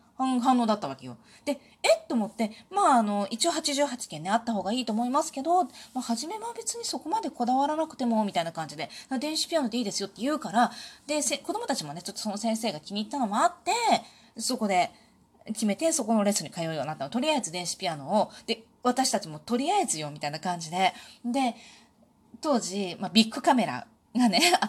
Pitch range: 195-260 Hz